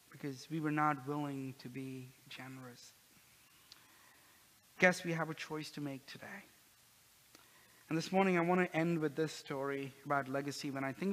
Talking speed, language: 165 wpm, English